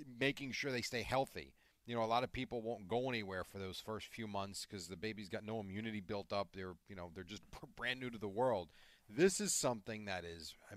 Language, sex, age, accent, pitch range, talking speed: English, male, 40-59, American, 100-130 Hz, 240 wpm